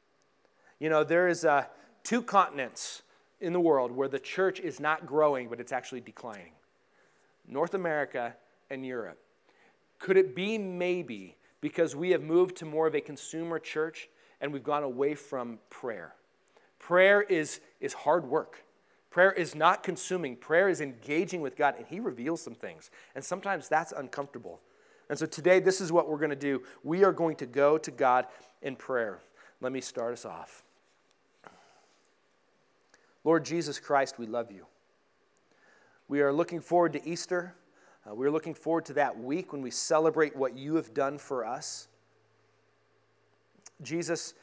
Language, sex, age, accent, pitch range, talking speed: English, male, 30-49, American, 135-170 Hz, 165 wpm